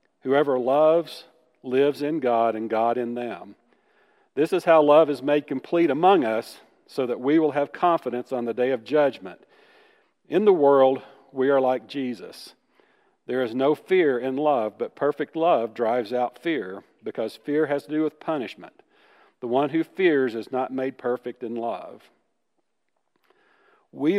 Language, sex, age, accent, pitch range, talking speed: English, male, 50-69, American, 120-155 Hz, 165 wpm